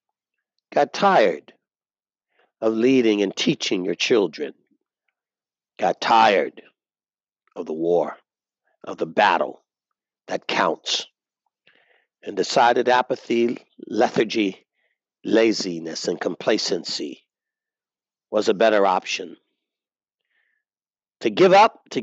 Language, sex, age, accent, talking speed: English, male, 60-79, American, 90 wpm